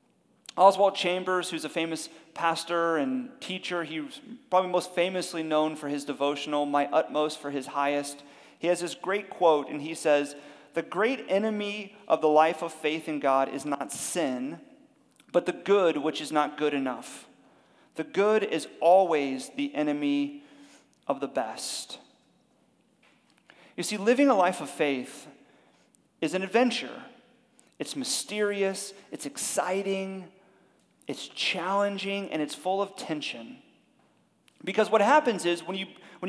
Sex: male